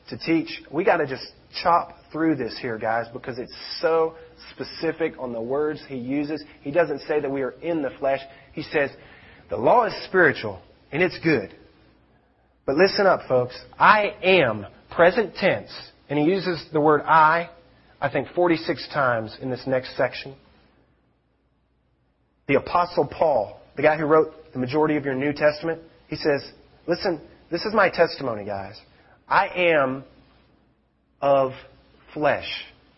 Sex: male